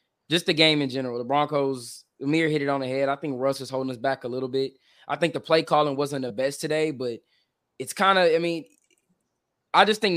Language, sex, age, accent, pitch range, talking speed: English, male, 20-39, American, 130-155 Hz, 240 wpm